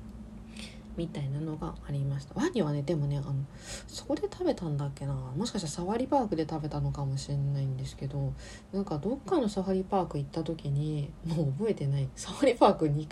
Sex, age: female, 40-59